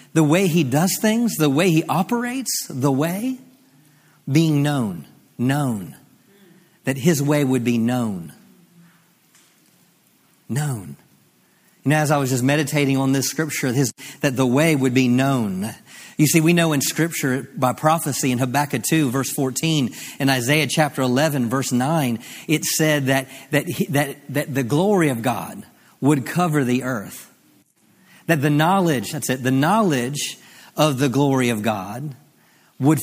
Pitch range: 135-165 Hz